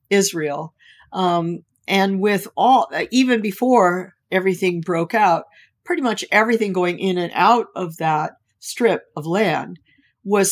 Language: English